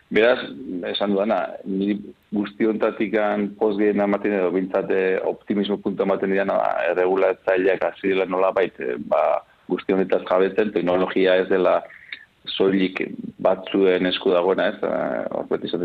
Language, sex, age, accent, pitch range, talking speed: Spanish, male, 30-49, Spanish, 90-100 Hz, 130 wpm